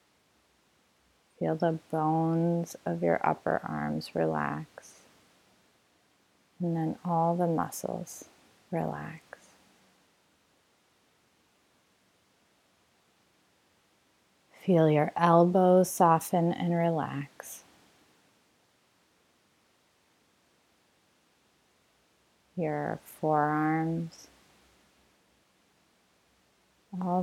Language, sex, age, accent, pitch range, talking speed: English, female, 30-49, American, 155-180 Hz, 50 wpm